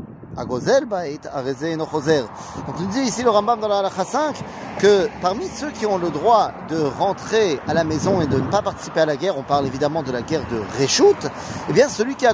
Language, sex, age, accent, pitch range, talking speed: French, male, 30-49, French, 145-205 Hz, 235 wpm